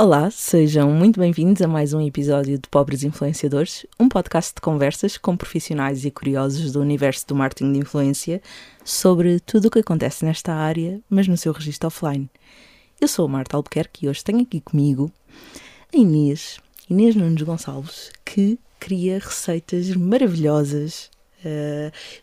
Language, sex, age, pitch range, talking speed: Portuguese, female, 20-39, 155-215 Hz, 155 wpm